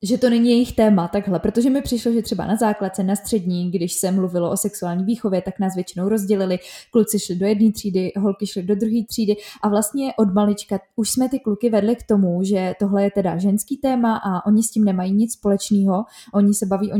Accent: native